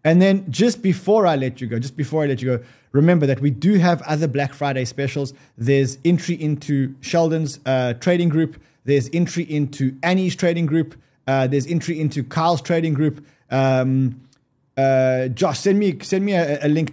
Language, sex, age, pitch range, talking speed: English, male, 20-39, 130-165 Hz, 185 wpm